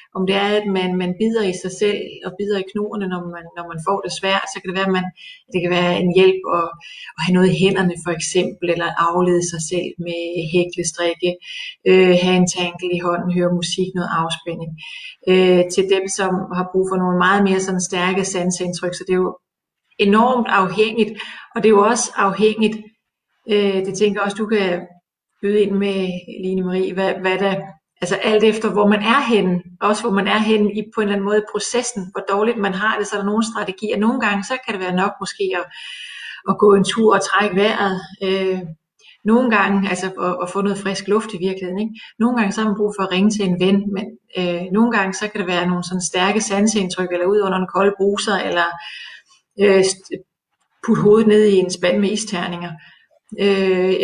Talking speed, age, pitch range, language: 220 wpm, 30-49, 180-210 Hz, English